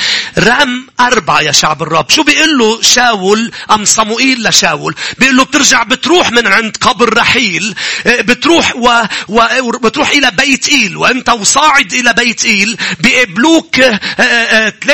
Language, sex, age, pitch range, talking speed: English, male, 40-59, 230-295 Hz, 130 wpm